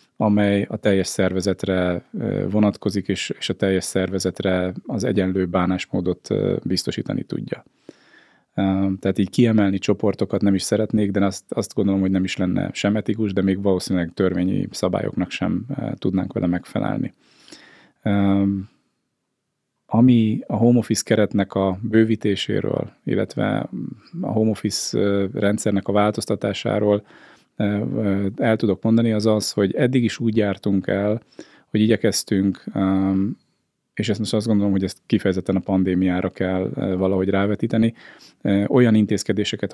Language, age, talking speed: Hungarian, 20-39, 120 wpm